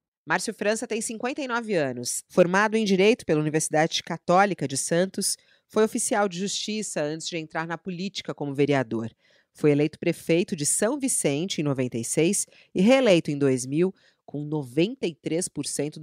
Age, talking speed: 30-49, 140 wpm